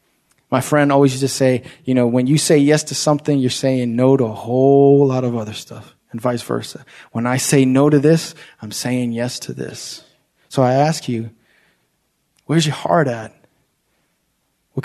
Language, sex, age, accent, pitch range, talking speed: English, male, 30-49, American, 125-155 Hz, 190 wpm